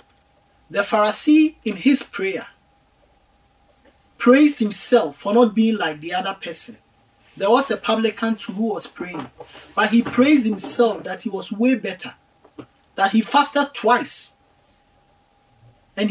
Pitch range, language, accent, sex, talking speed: 160-240 Hz, English, Nigerian, male, 135 wpm